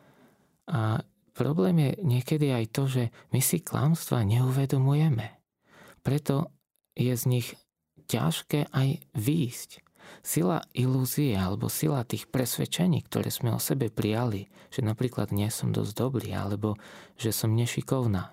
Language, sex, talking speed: Slovak, male, 130 wpm